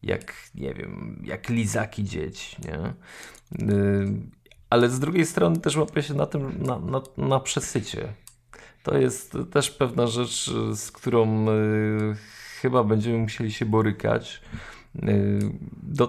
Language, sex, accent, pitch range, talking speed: Polish, male, native, 105-130 Hz, 135 wpm